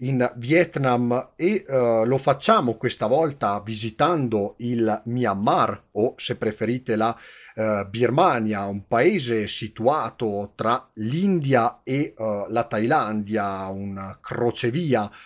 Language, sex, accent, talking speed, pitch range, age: Italian, male, native, 95 wpm, 110-135 Hz, 30-49